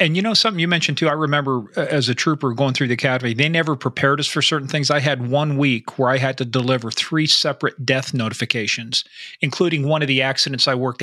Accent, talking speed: American, 235 wpm